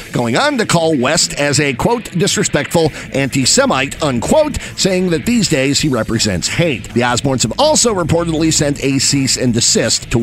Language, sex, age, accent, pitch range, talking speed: English, male, 50-69, American, 135-185 Hz, 170 wpm